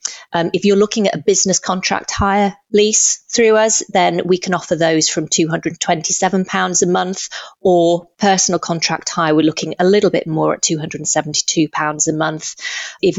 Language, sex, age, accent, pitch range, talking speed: English, female, 30-49, British, 155-185 Hz, 165 wpm